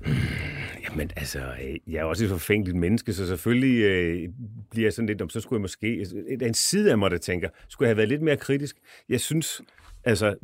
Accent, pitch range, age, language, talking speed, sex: native, 95-125 Hz, 30-49, Danish, 220 wpm, male